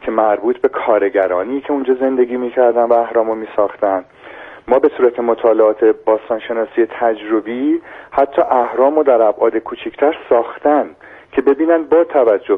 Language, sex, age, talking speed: Persian, male, 40-59, 130 wpm